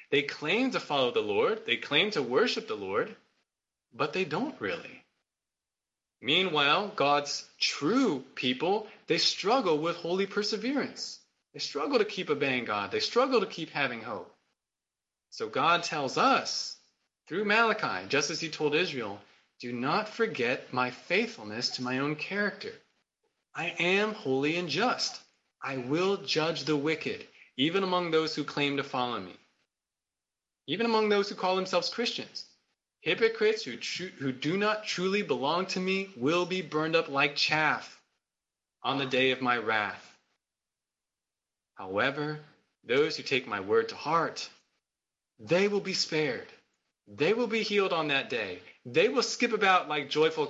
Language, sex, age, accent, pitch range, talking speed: English, male, 20-39, American, 140-215 Hz, 155 wpm